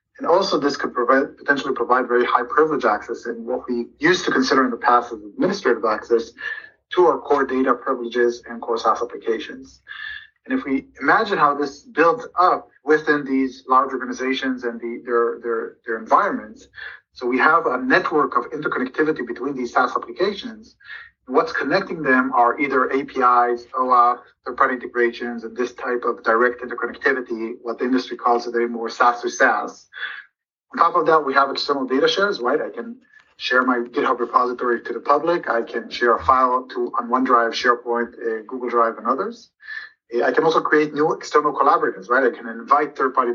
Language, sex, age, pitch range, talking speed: English, male, 30-49, 120-160 Hz, 185 wpm